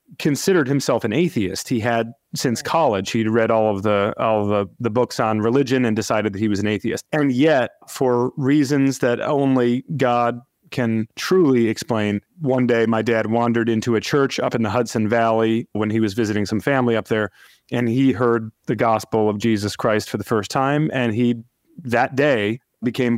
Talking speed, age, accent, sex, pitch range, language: 195 wpm, 30-49, American, male, 110-130 Hz, English